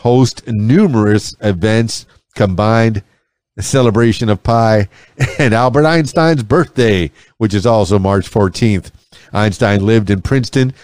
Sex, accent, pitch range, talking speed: male, American, 100-125 Hz, 115 wpm